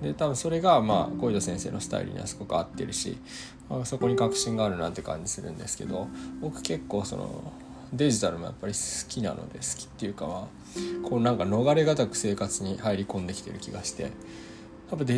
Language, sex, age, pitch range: Japanese, male, 20-39, 100-130 Hz